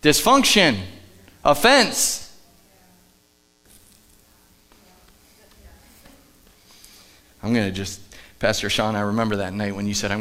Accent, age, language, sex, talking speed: American, 30-49, English, male, 95 wpm